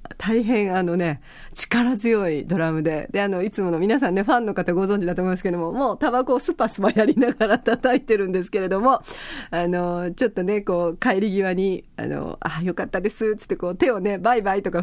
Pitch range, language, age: 175-235 Hz, Japanese, 40-59